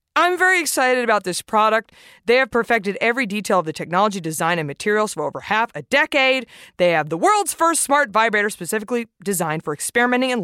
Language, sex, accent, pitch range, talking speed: English, female, American, 185-250 Hz, 195 wpm